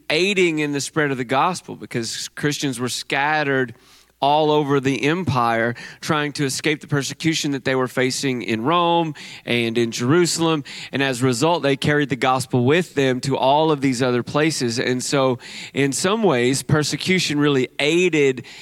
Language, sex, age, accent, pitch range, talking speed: English, male, 30-49, American, 130-155 Hz, 170 wpm